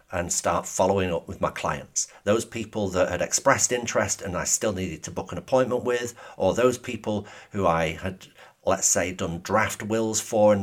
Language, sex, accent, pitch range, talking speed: English, male, British, 95-115 Hz, 200 wpm